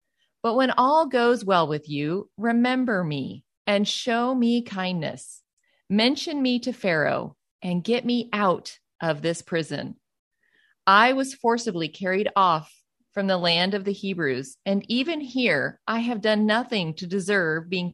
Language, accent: English, American